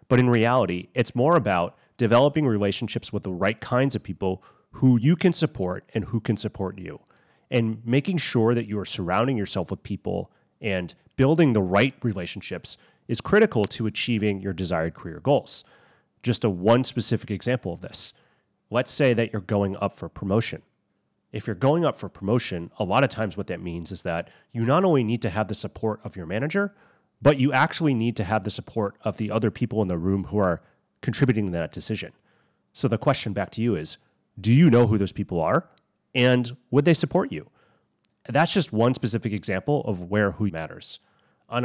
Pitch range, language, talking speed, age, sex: 95-125 Hz, English, 195 wpm, 30-49, male